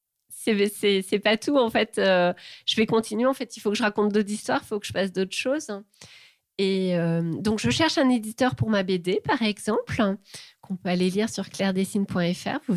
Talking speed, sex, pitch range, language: 215 wpm, female, 190-235 Hz, French